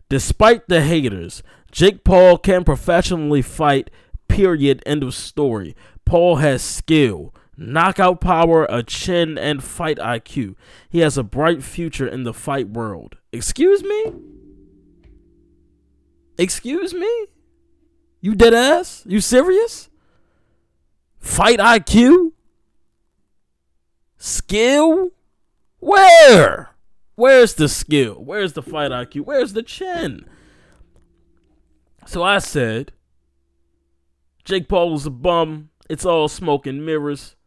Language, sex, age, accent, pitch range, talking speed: English, male, 20-39, American, 125-180 Hz, 105 wpm